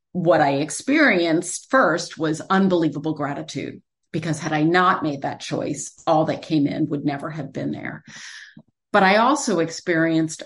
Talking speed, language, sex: 155 wpm, English, female